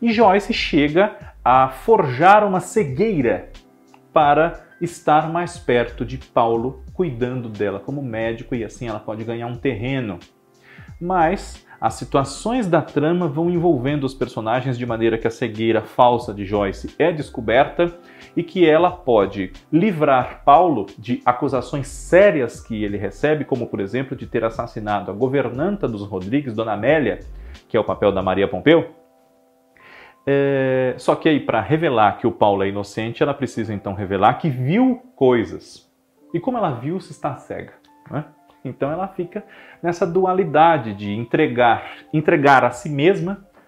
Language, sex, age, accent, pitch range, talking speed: Portuguese, male, 40-59, Brazilian, 115-165 Hz, 155 wpm